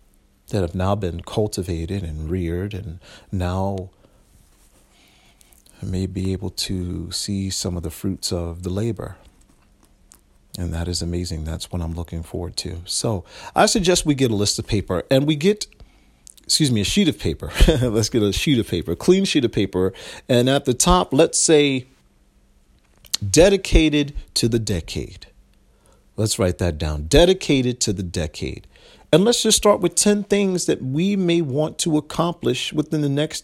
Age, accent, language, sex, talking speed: 40-59, American, English, male, 170 wpm